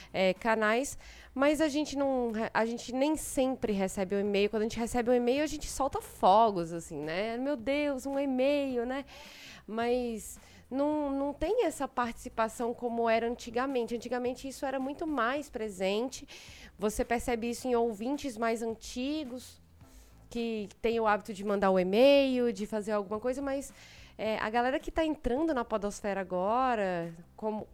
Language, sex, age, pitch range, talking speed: Portuguese, female, 20-39, 190-255 Hz, 160 wpm